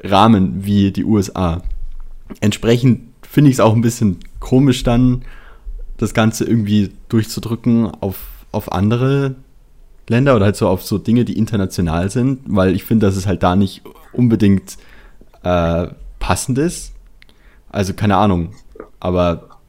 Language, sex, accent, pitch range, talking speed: German, male, German, 95-120 Hz, 140 wpm